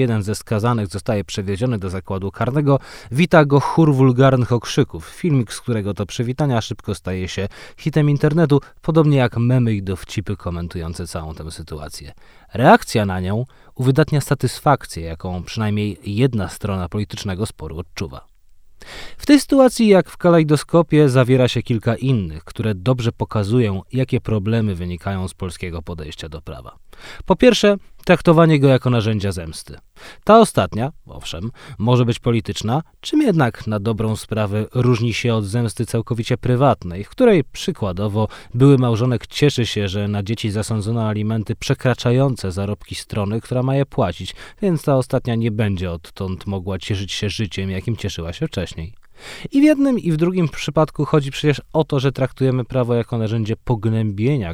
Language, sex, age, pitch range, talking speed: Polish, male, 20-39, 100-135 Hz, 155 wpm